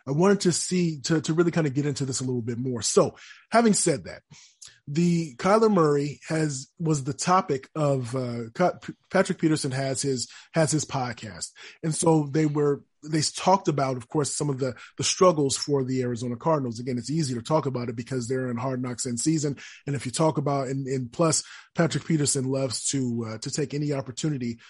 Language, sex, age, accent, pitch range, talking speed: English, male, 30-49, American, 130-165 Hz, 205 wpm